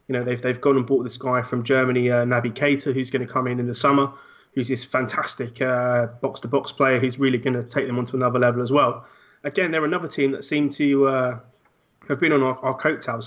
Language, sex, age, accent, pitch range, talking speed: English, male, 20-39, British, 125-135 Hz, 250 wpm